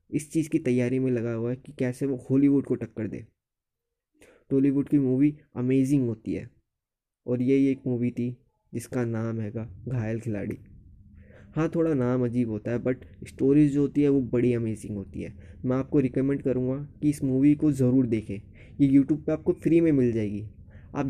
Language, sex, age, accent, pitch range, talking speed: Hindi, male, 20-39, native, 115-150 Hz, 190 wpm